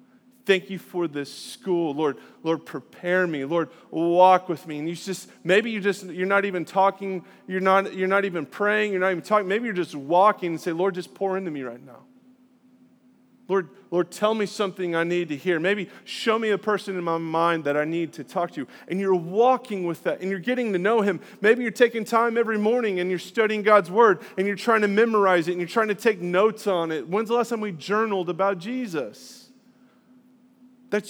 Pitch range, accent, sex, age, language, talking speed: 175-220 Hz, American, male, 30-49, English, 220 wpm